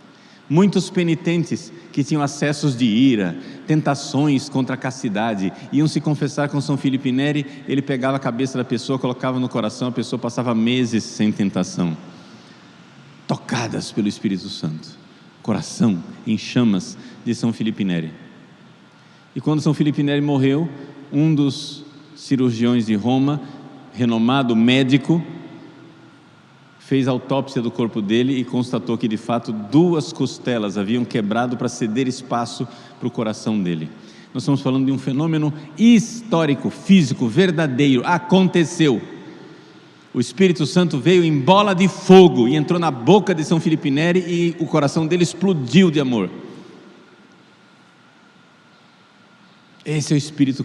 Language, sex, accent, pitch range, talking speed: Portuguese, male, Brazilian, 125-160 Hz, 135 wpm